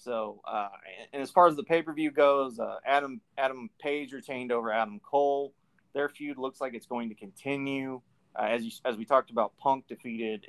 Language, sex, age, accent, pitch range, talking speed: English, male, 30-49, American, 115-140 Hz, 205 wpm